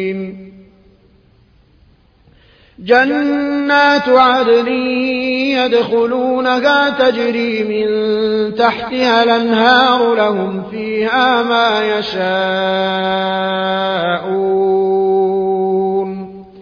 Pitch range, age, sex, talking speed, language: 195-250 Hz, 30-49, male, 40 wpm, Arabic